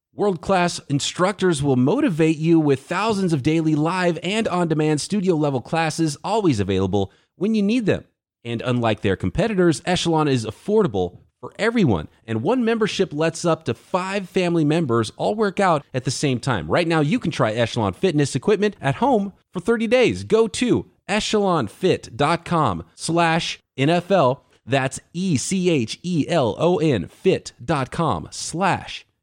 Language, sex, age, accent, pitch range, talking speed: English, male, 30-49, American, 120-175 Hz, 135 wpm